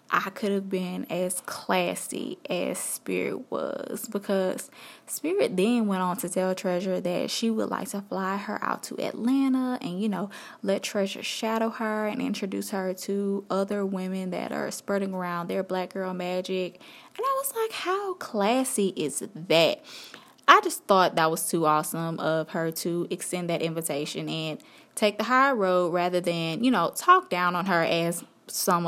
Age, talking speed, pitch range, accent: 20-39, 175 wpm, 175-225 Hz, American